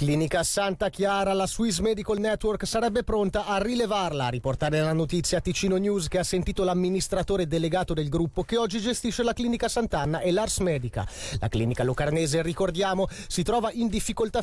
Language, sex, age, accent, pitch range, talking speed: Italian, male, 30-49, native, 160-215 Hz, 175 wpm